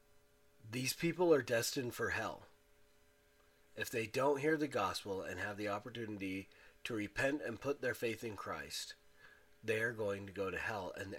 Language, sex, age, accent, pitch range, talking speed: English, male, 40-59, American, 85-130 Hz, 170 wpm